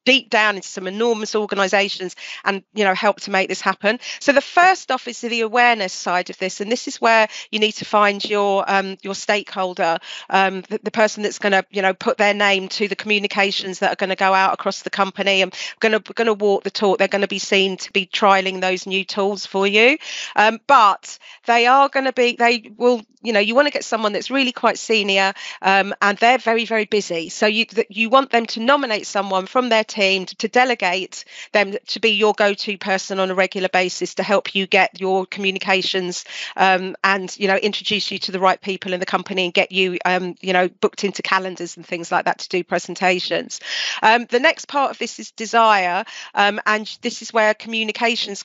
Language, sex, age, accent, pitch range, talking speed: English, female, 40-59, British, 190-225 Hz, 220 wpm